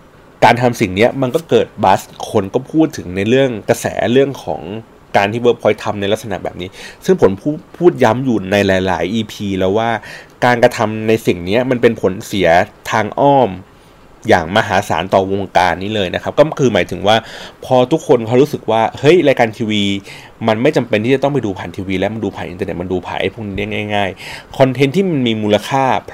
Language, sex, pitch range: Thai, male, 100-130 Hz